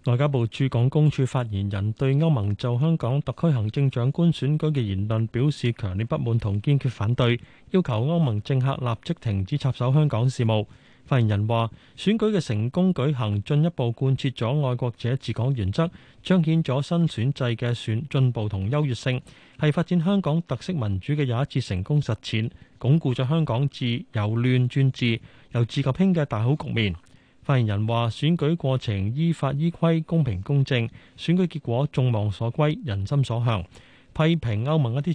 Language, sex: Chinese, male